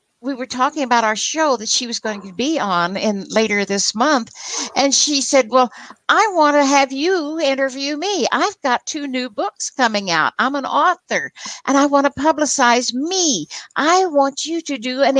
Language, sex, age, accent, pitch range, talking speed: English, female, 60-79, American, 215-295 Hz, 195 wpm